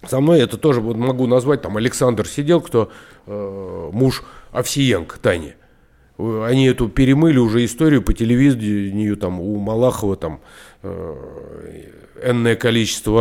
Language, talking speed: Russian, 125 wpm